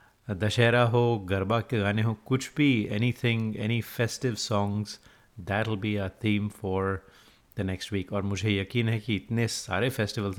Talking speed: 170 wpm